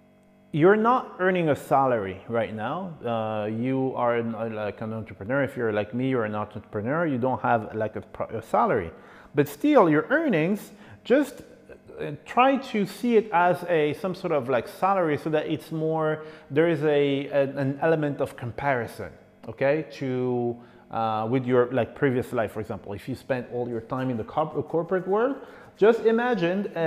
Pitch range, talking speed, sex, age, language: 120-175 Hz, 185 wpm, male, 30-49, English